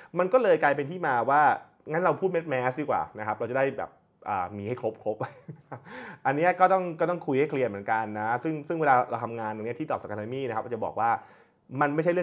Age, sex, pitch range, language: 20-39, male, 115-165 Hz, Thai